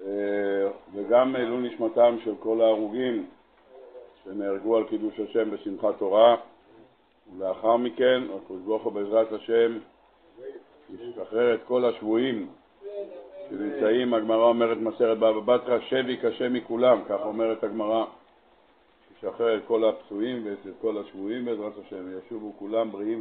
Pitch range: 110-125 Hz